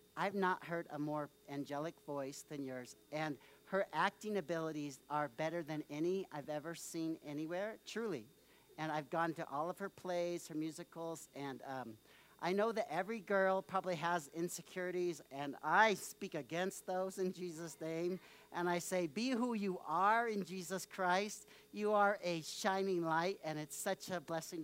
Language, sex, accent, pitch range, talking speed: English, male, American, 155-210 Hz, 170 wpm